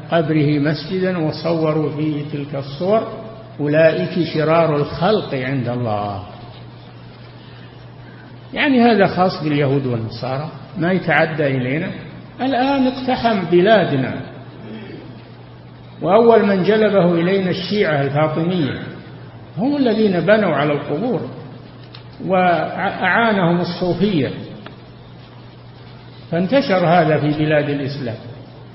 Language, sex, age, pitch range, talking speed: Arabic, male, 60-79, 140-180 Hz, 85 wpm